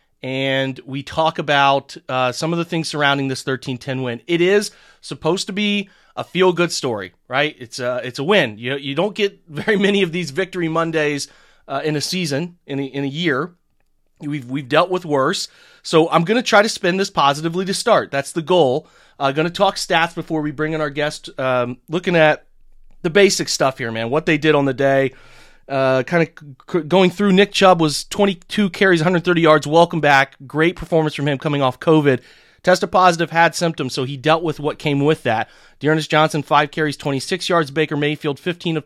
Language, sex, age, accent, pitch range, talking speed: English, male, 30-49, American, 140-175 Hz, 210 wpm